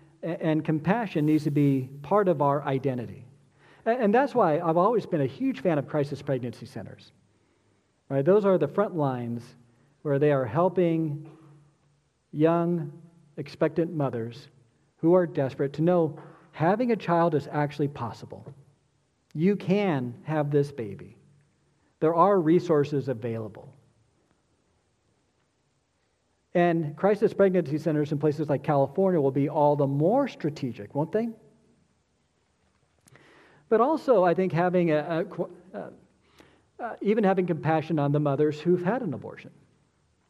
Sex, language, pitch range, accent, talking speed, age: male, English, 135-175 Hz, American, 135 wpm, 50-69